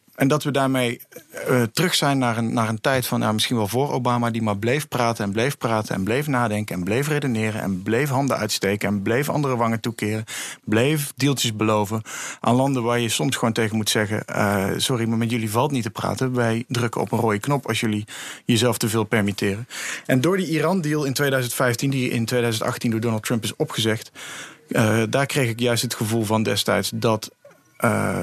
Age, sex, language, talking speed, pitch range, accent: 50-69, male, Dutch, 210 wpm, 110-130 Hz, Dutch